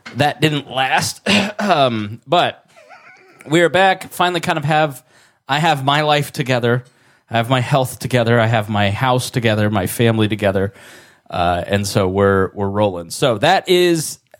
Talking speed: 160 wpm